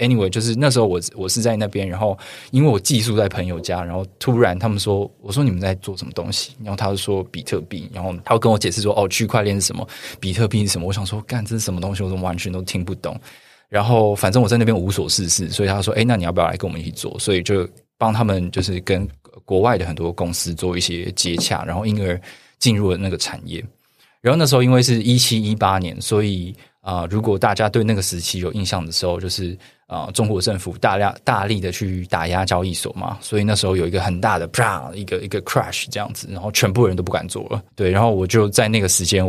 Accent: native